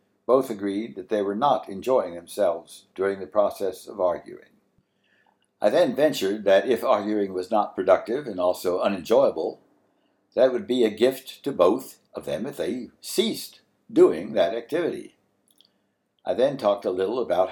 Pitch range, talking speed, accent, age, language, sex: 100-120 Hz, 160 wpm, American, 60-79, English, male